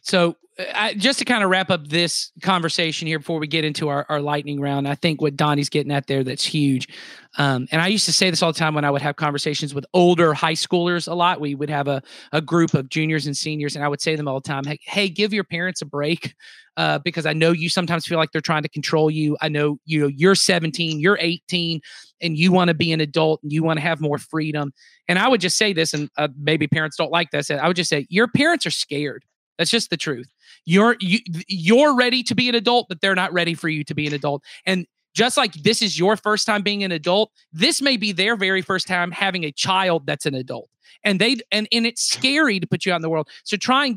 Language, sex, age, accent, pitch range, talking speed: English, male, 30-49, American, 150-205 Hz, 260 wpm